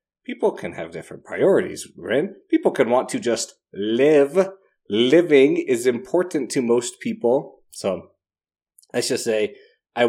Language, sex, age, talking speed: English, male, 20-39, 135 wpm